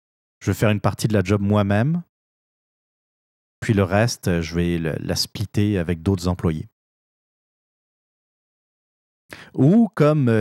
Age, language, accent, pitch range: 30-49, French, French, 100-130 Hz